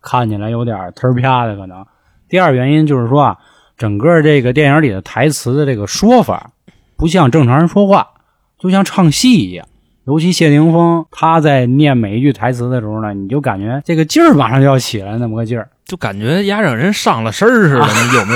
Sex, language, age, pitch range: male, Chinese, 20-39, 115-155 Hz